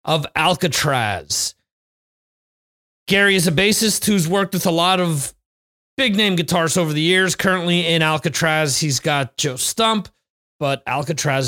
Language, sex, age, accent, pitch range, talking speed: English, male, 30-49, American, 140-185 Hz, 135 wpm